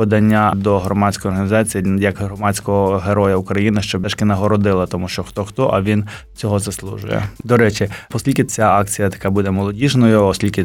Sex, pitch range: male, 100-115 Hz